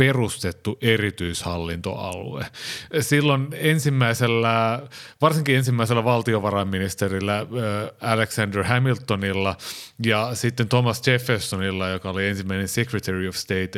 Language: Finnish